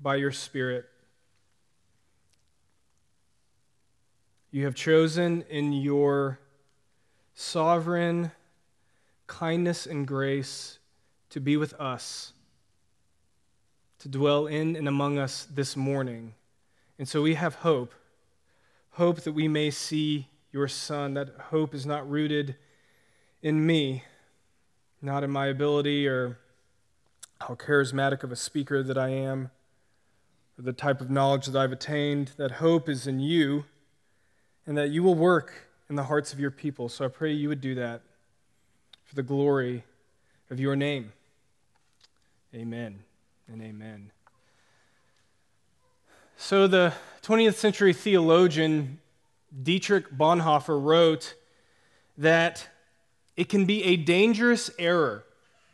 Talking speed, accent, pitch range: 120 wpm, American, 125-160 Hz